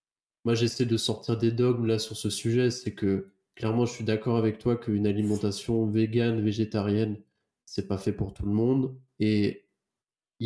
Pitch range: 110-125 Hz